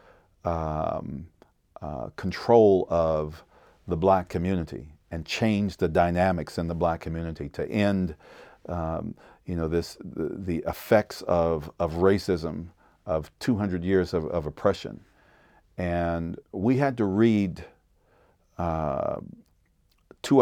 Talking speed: 115 wpm